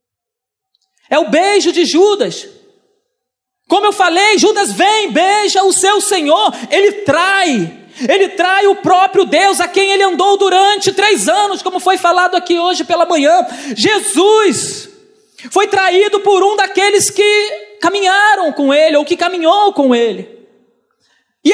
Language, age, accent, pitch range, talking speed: Portuguese, 40-59, Brazilian, 365-415 Hz, 140 wpm